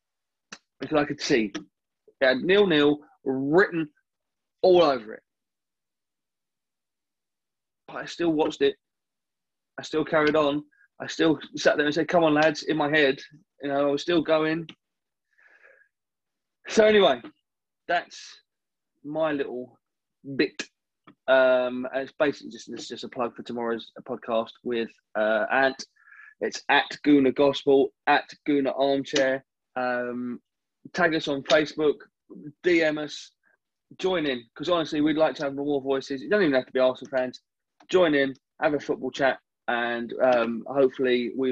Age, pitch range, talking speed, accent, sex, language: 20-39, 125-155 Hz, 145 wpm, British, male, English